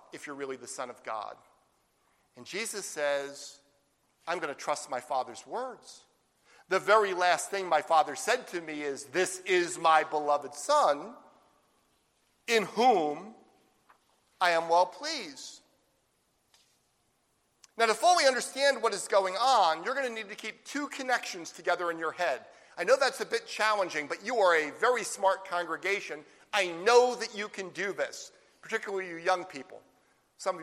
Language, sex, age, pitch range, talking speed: English, male, 50-69, 165-235 Hz, 165 wpm